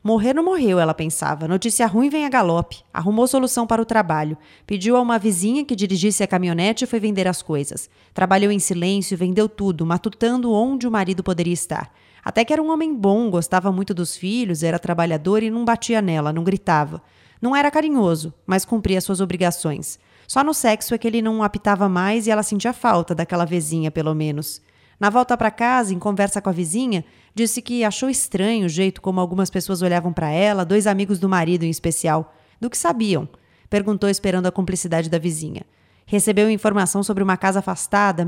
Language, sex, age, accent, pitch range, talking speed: Portuguese, female, 30-49, Brazilian, 175-220 Hz, 195 wpm